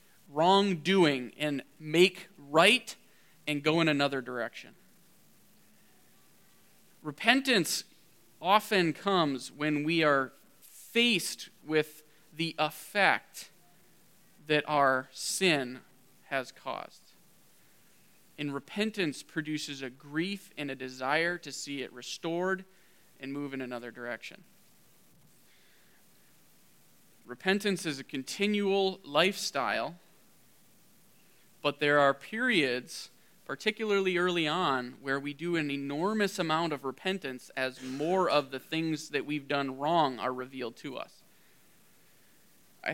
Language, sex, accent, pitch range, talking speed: English, male, American, 135-170 Hz, 105 wpm